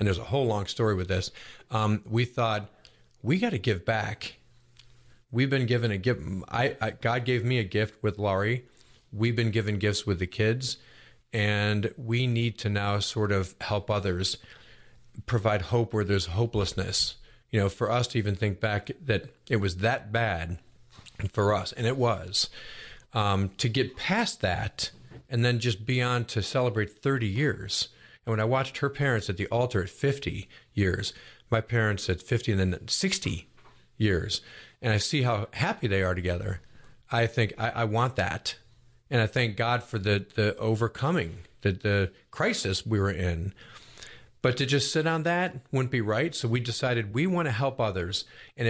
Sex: male